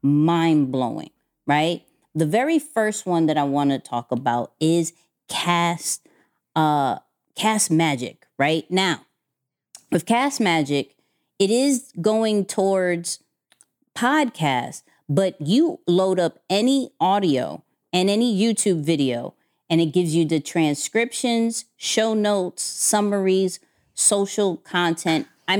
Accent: American